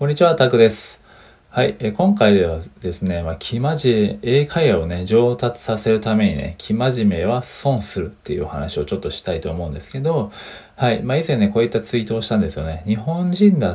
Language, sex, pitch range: Japanese, male, 90-125 Hz